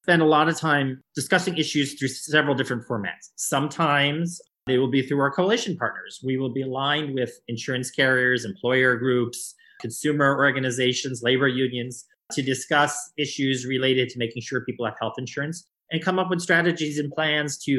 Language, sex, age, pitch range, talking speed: English, male, 30-49, 125-145 Hz, 170 wpm